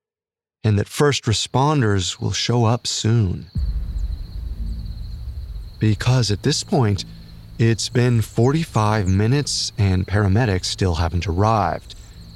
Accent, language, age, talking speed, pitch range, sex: American, English, 30-49, 100 wpm, 105-135 Hz, male